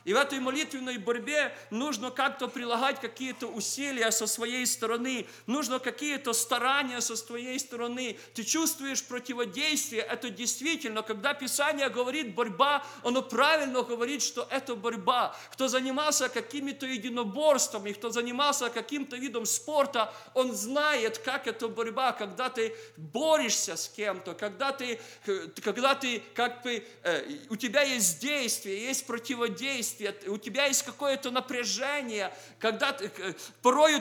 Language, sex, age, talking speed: English, male, 40-59, 130 wpm